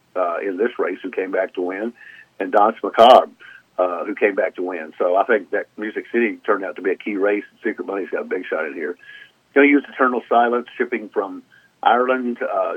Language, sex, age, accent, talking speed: English, male, 50-69, American, 230 wpm